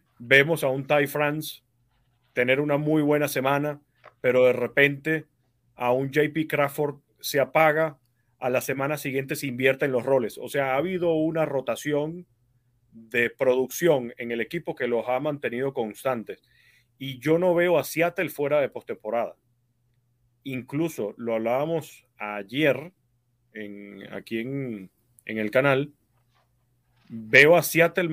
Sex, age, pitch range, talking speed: male, 30-49, 120-155 Hz, 140 wpm